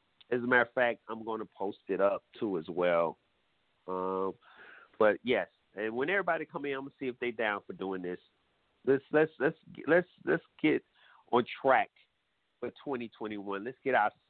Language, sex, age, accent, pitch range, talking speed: English, male, 40-59, American, 110-170 Hz, 185 wpm